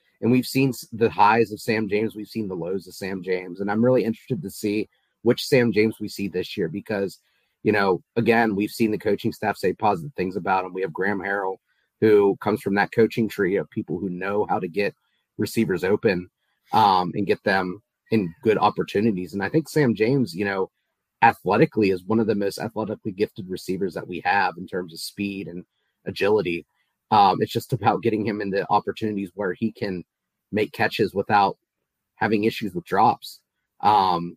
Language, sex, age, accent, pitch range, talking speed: English, male, 30-49, American, 95-115 Hz, 195 wpm